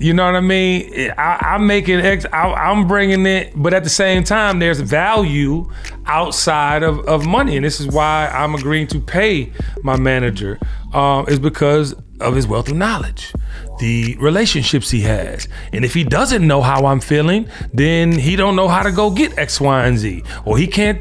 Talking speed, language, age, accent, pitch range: 195 wpm, English, 30-49, American, 130-180 Hz